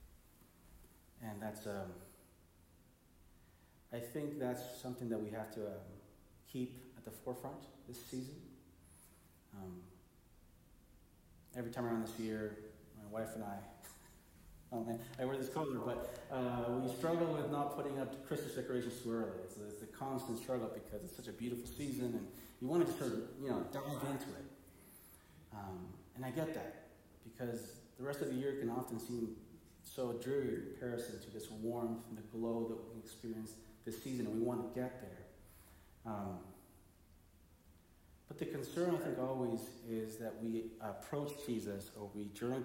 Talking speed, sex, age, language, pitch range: 165 wpm, male, 30-49, English, 100-125 Hz